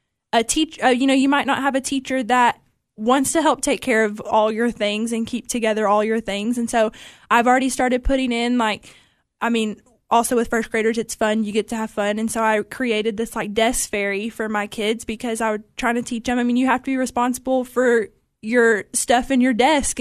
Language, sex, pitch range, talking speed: English, female, 225-250 Hz, 235 wpm